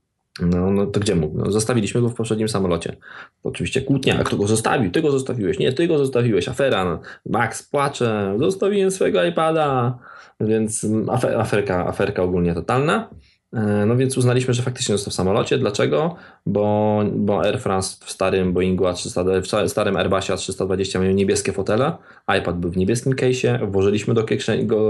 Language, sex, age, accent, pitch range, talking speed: Polish, male, 20-39, native, 90-115 Hz, 170 wpm